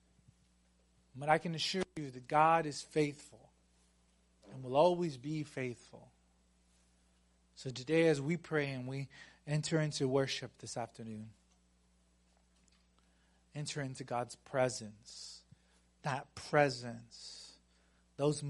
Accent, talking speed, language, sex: American, 105 wpm, English, male